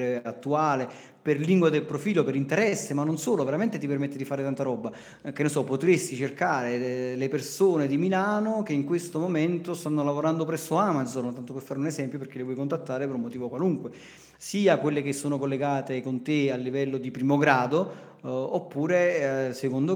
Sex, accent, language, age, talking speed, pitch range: male, native, Italian, 40-59, 185 wpm, 125-150 Hz